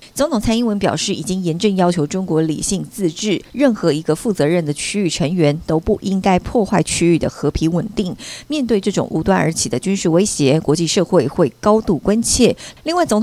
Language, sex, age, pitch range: Chinese, female, 50-69, 155-205 Hz